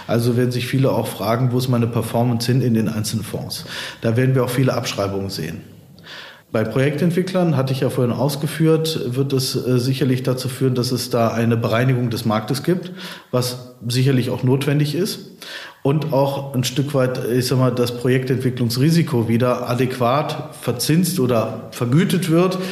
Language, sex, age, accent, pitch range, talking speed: German, male, 40-59, German, 120-135 Hz, 170 wpm